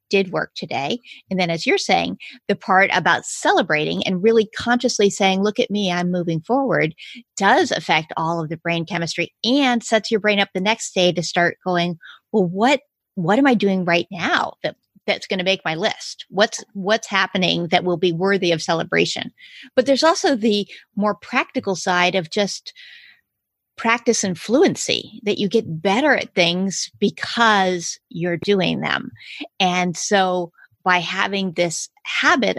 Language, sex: English, female